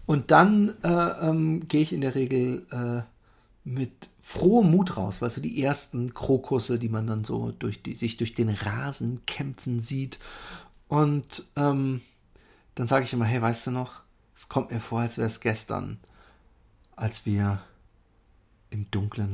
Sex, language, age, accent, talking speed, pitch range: male, German, 50-69, German, 160 wpm, 105-150 Hz